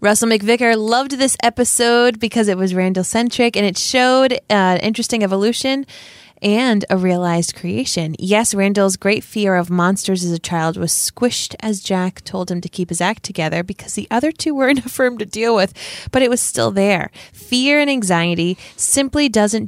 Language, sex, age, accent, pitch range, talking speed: English, female, 20-39, American, 175-225 Hz, 180 wpm